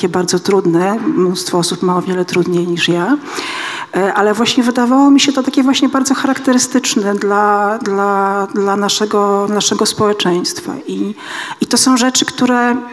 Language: Polish